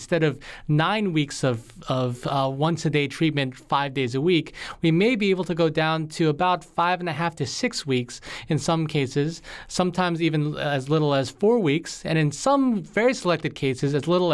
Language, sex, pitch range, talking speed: English, male, 130-165 Hz, 185 wpm